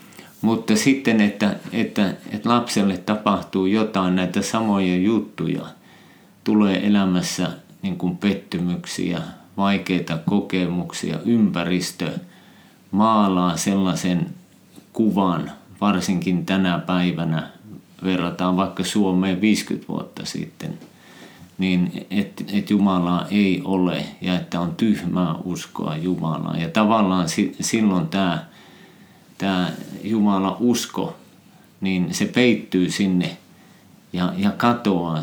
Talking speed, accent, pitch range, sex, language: 100 wpm, native, 90-105 Hz, male, Finnish